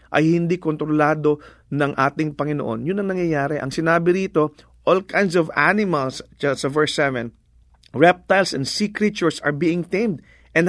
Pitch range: 120-165 Hz